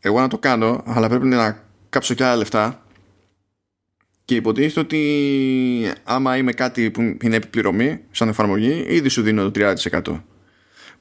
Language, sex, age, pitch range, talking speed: Greek, male, 20-39, 100-130 Hz, 145 wpm